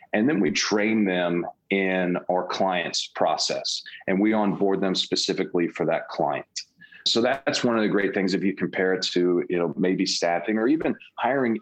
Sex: male